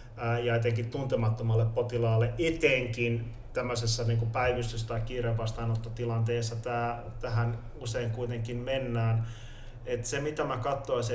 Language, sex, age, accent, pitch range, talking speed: Finnish, male, 30-49, native, 115-120 Hz, 100 wpm